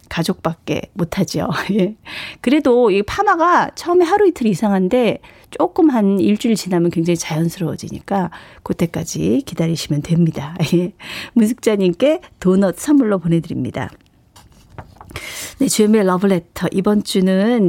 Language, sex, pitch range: Korean, female, 170-245 Hz